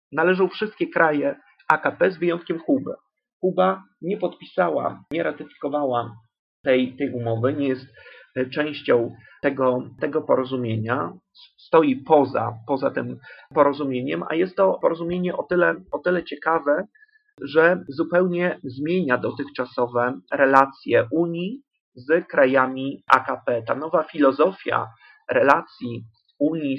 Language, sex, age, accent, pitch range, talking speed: Polish, male, 40-59, native, 130-165 Hz, 110 wpm